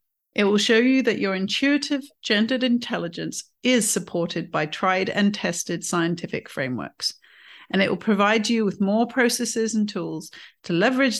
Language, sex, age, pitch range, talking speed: English, female, 40-59, 180-230 Hz, 155 wpm